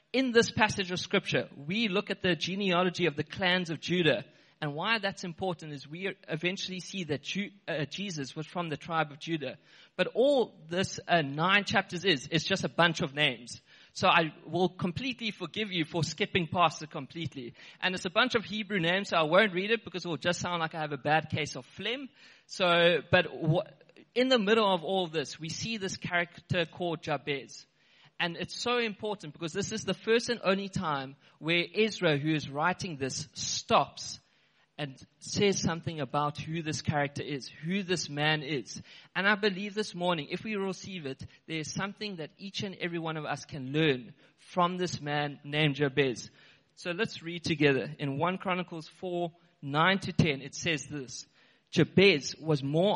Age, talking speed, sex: 20-39, 190 wpm, male